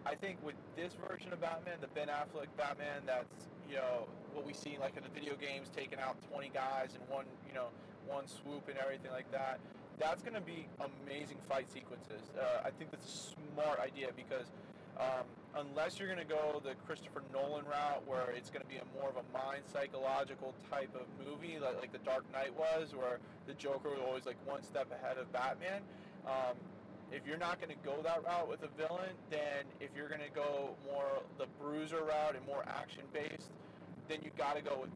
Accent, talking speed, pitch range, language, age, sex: American, 210 wpm, 135-165 Hz, English, 20-39, male